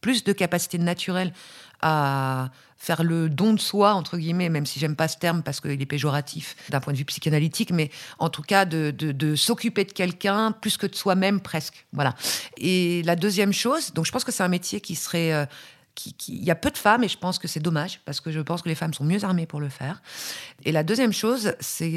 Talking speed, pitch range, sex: 245 wpm, 150-190 Hz, female